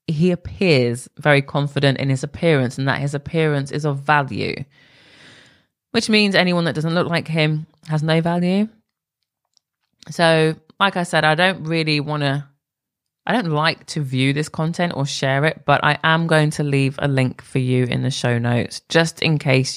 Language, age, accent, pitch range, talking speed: English, 20-39, British, 135-165 Hz, 185 wpm